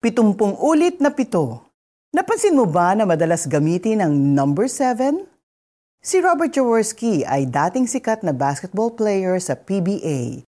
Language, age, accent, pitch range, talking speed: Filipino, 40-59, native, 160-265 Hz, 135 wpm